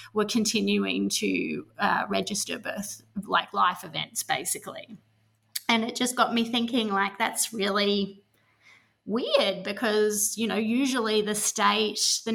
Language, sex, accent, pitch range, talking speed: English, female, Australian, 190-215 Hz, 130 wpm